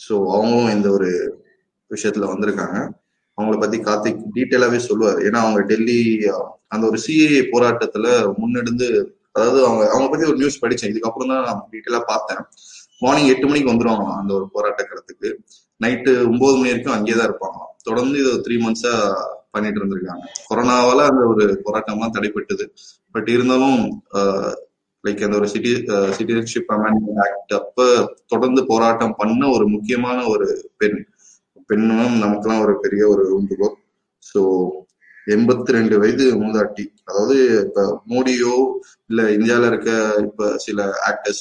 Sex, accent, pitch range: male, native, 105-135 Hz